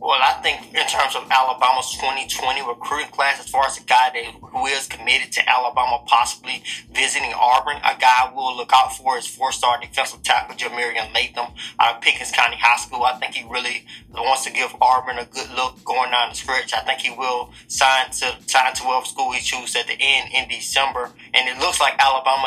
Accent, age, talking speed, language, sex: American, 20-39, 210 wpm, English, male